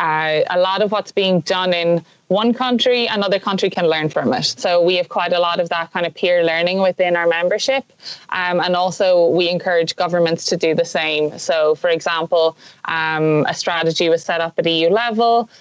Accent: Irish